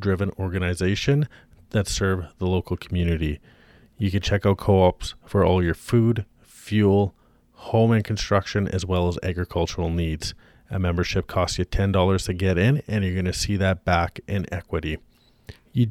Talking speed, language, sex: 165 wpm, English, male